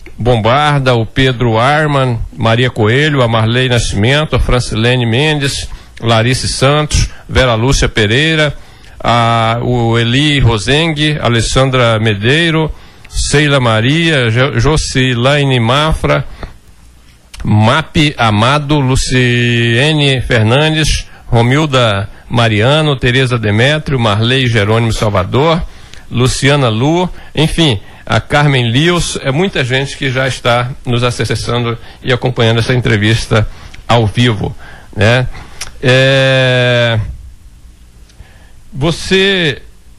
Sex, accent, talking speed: male, Brazilian, 90 wpm